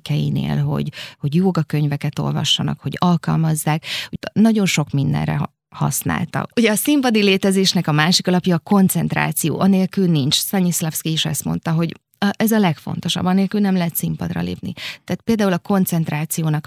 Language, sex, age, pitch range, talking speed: Hungarian, female, 20-39, 160-190 Hz, 135 wpm